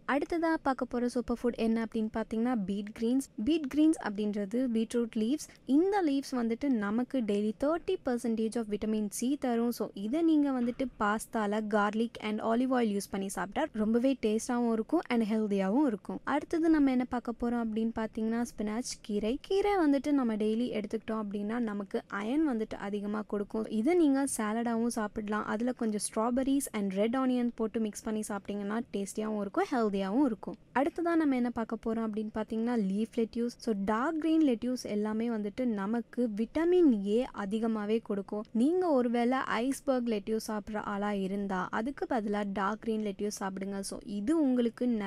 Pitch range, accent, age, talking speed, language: 215-255 Hz, native, 20-39, 110 wpm, Tamil